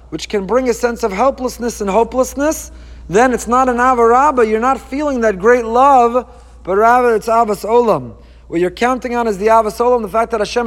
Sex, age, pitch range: male, 40-59, 200-245 Hz